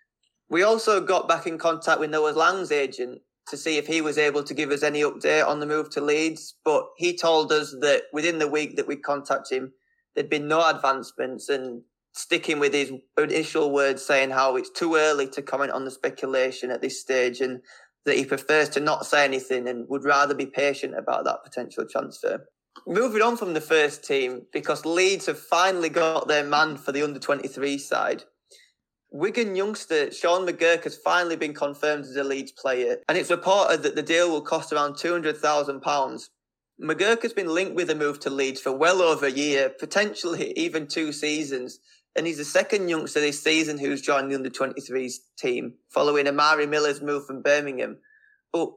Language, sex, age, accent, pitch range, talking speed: English, male, 20-39, British, 140-170 Hz, 190 wpm